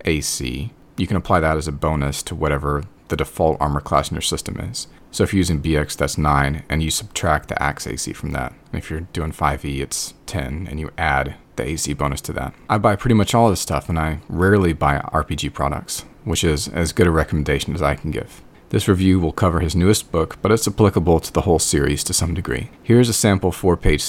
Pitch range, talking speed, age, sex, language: 75-95 Hz, 235 wpm, 30-49, male, English